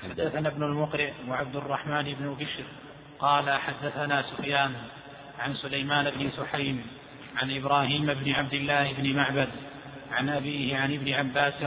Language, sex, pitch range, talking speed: Arabic, male, 140-145 Hz, 135 wpm